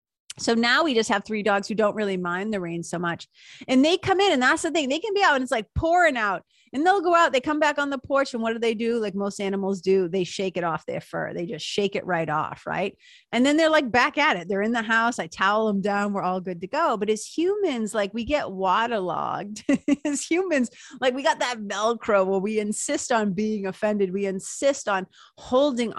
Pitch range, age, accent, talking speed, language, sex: 190-255 Hz, 30-49, American, 250 wpm, English, female